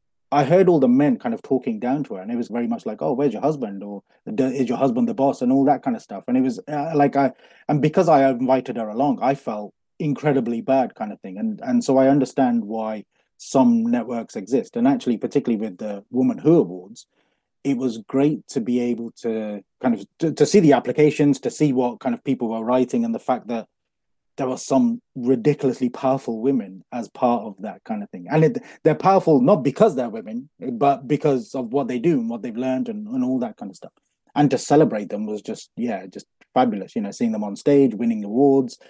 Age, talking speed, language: 20-39, 235 wpm, English